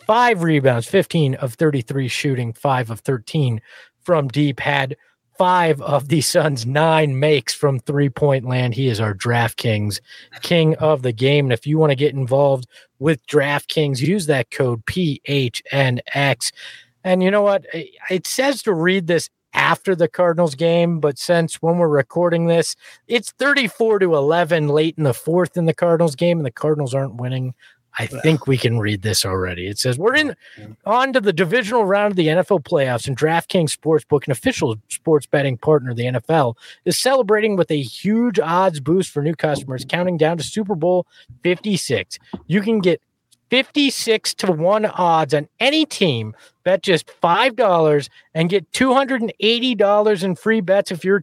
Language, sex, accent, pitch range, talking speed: English, male, American, 135-190 Hz, 170 wpm